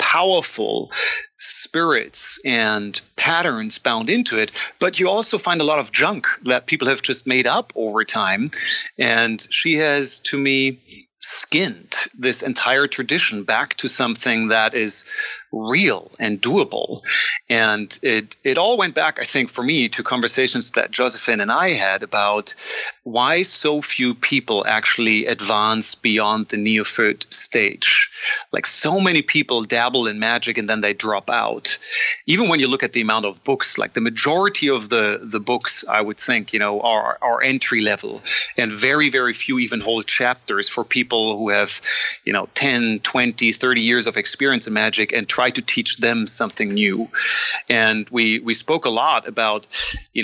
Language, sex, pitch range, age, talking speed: English, male, 110-170 Hz, 30-49, 170 wpm